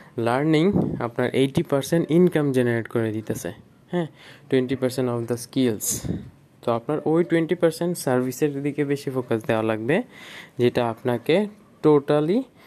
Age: 20-39